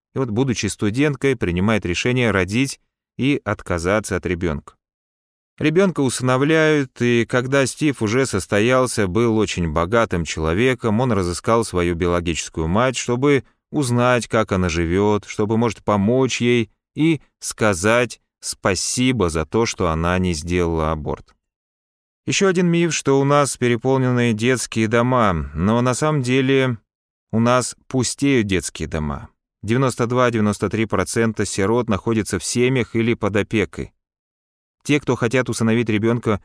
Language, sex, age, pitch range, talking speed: Russian, male, 30-49, 95-125 Hz, 130 wpm